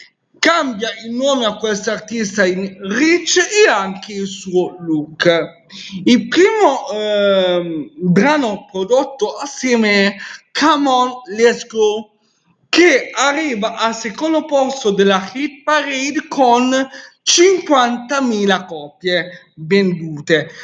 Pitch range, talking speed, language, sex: 195-255 Hz, 100 wpm, Italian, male